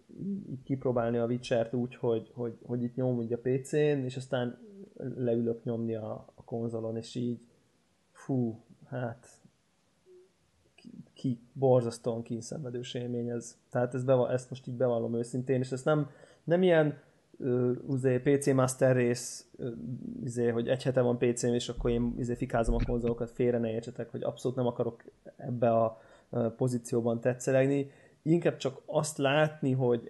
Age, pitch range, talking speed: 20-39, 120-135 Hz, 160 wpm